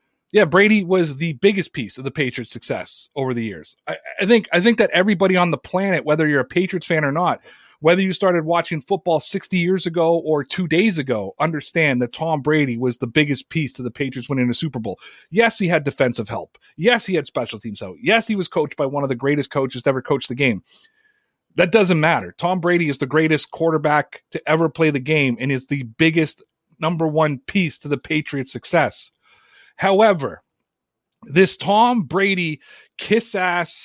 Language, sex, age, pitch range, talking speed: English, male, 30-49, 150-205 Hz, 200 wpm